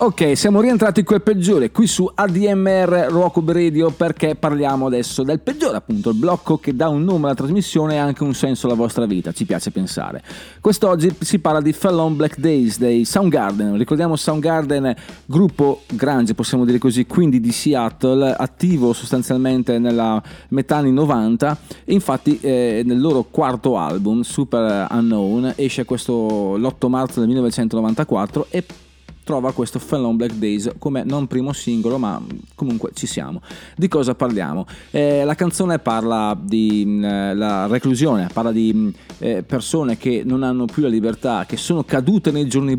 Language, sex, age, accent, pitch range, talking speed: Italian, male, 30-49, native, 115-155 Hz, 160 wpm